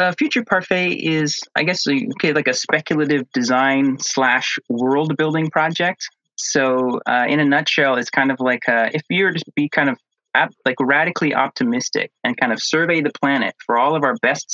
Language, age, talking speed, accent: English, 30-49, 195 wpm, American